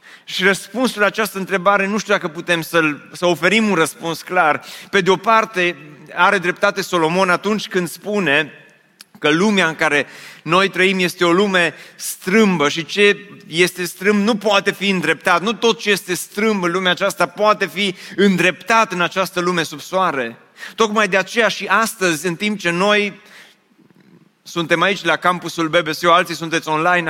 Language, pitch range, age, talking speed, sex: Romanian, 170-200 Hz, 30-49, 170 wpm, male